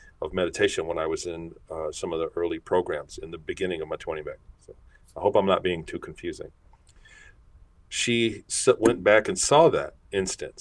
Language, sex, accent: English, male, American